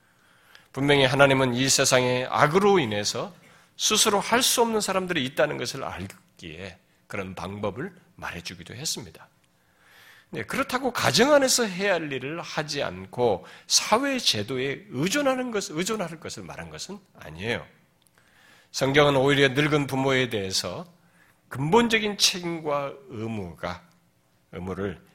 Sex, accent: male, native